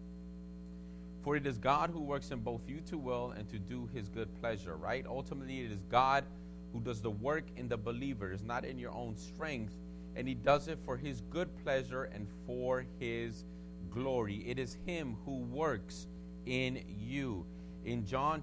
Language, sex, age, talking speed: English, male, 30-49, 180 wpm